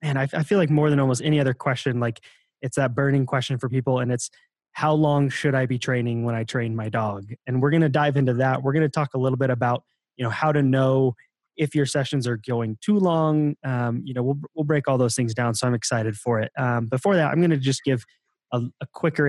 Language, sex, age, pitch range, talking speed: English, male, 20-39, 120-140 Hz, 265 wpm